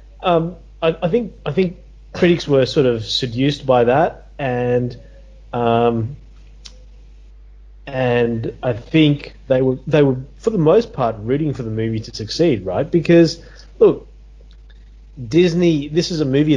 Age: 30-49